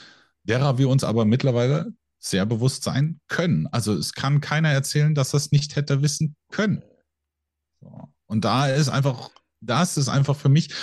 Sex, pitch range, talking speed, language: male, 100-150 Hz, 165 wpm, German